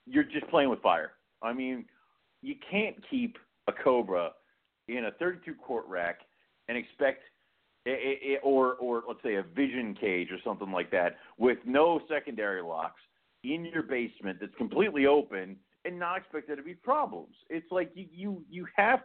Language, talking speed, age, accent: English, 160 wpm, 40-59, American